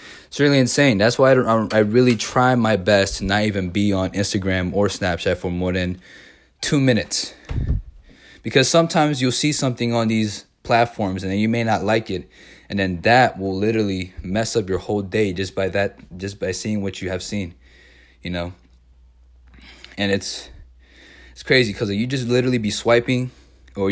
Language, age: English, 20-39